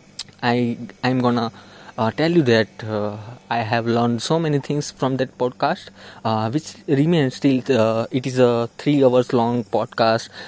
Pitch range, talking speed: 110-130 Hz, 180 wpm